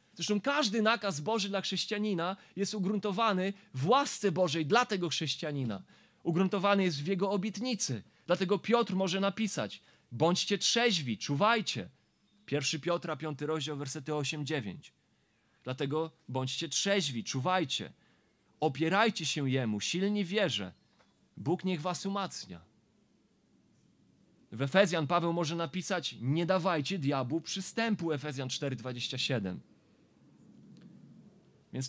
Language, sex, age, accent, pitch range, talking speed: Polish, male, 30-49, native, 150-200 Hz, 105 wpm